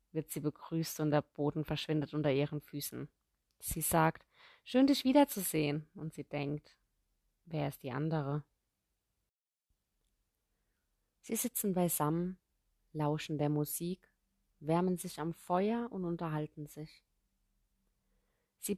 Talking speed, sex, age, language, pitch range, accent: 115 wpm, female, 30-49, German, 140-180 Hz, German